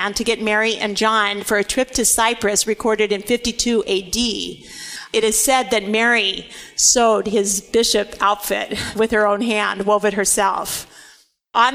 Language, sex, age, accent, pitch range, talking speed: English, female, 50-69, American, 210-230 Hz, 160 wpm